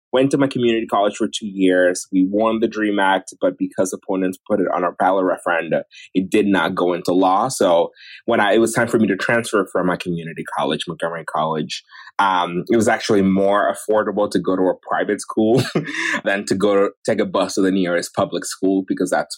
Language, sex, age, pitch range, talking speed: English, male, 20-39, 95-130 Hz, 215 wpm